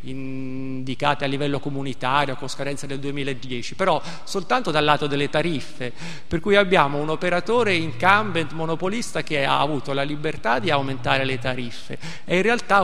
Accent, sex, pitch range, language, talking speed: native, male, 140-170 Hz, Italian, 155 wpm